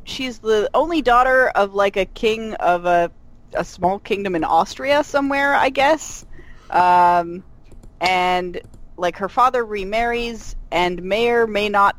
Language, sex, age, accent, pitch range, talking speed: English, female, 30-49, American, 165-210 Hz, 140 wpm